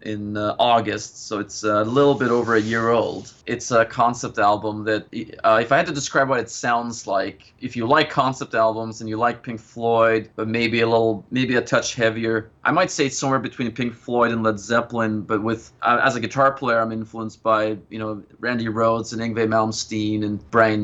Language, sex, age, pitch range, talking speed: English, male, 20-39, 110-125 Hz, 220 wpm